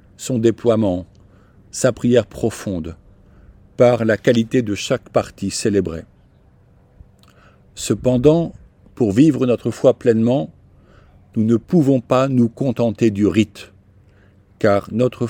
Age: 50-69